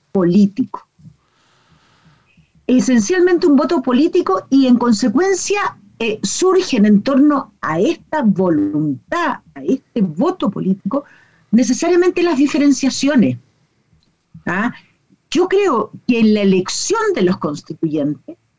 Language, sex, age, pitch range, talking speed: Spanish, female, 50-69, 190-285 Hz, 100 wpm